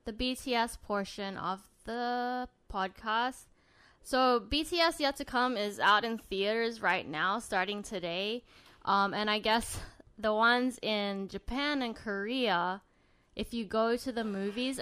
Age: 10-29